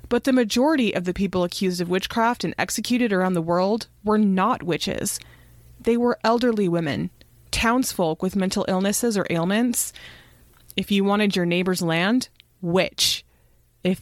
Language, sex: English, female